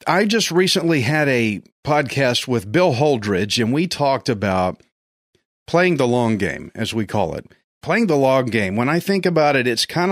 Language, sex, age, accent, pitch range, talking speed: English, male, 40-59, American, 120-165 Hz, 190 wpm